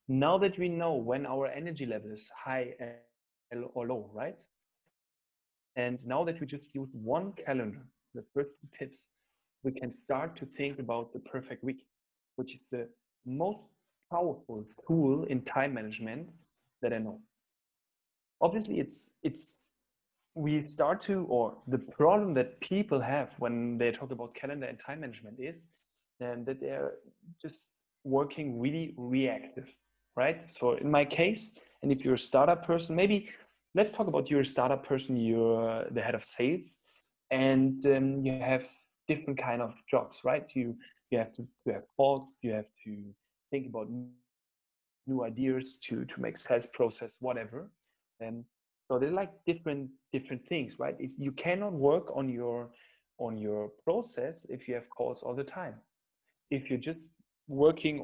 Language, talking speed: English, 160 wpm